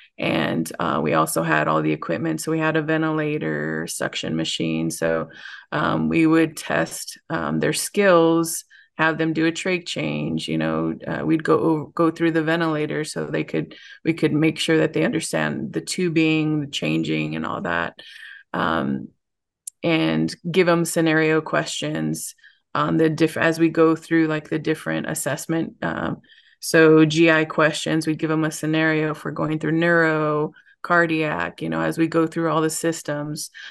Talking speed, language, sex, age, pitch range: 170 wpm, English, female, 20-39, 145-165 Hz